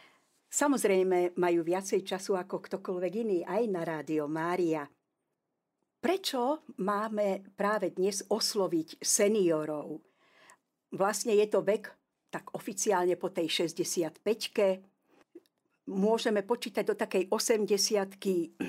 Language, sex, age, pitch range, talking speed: Slovak, female, 50-69, 180-220 Hz, 100 wpm